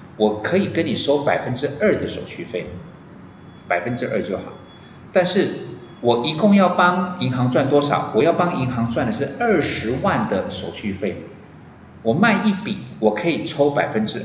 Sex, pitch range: male, 110-175 Hz